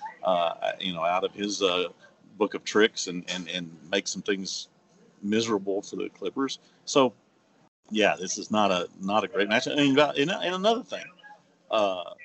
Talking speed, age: 175 wpm, 40-59